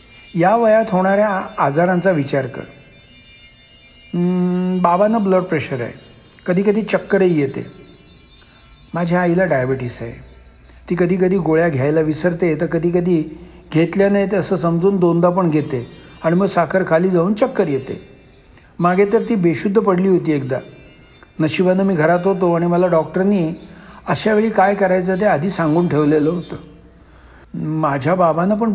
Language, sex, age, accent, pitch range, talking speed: Marathi, male, 60-79, native, 150-195 Hz, 140 wpm